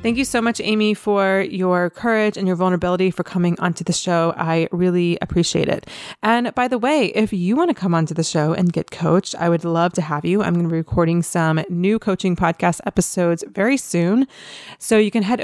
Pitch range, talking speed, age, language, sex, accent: 170-215 Hz, 220 wpm, 30-49, English, female, American